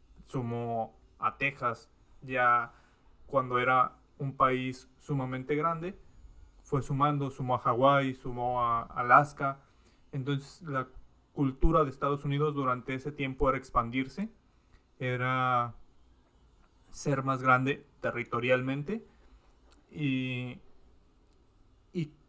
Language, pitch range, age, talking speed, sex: Spanish, 120-140 Hz, 30-49, 95 wpm, male